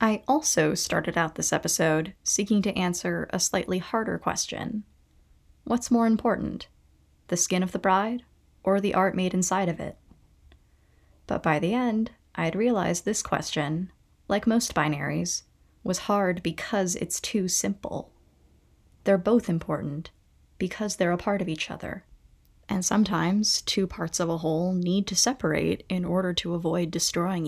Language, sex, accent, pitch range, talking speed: English, female, American, 165-205 Hz, 155 wpm